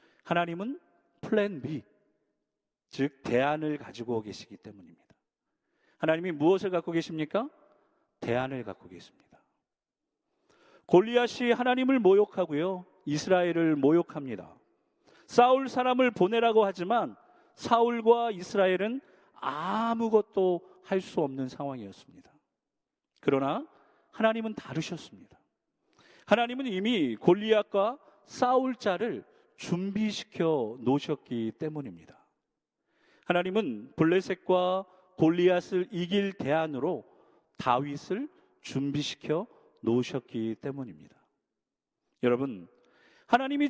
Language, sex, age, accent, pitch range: Korean, male, 40-59, native, 150-225 Hz